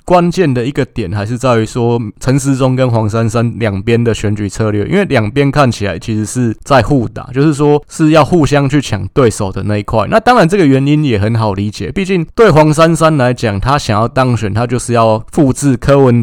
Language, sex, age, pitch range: Chinese, male, 20-39, 110-145 Hz